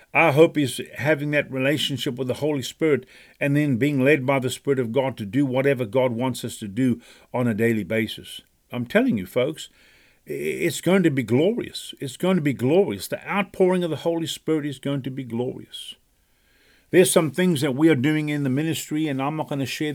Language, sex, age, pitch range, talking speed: English, male, 50-69, 120-145 Hz, 215 wpm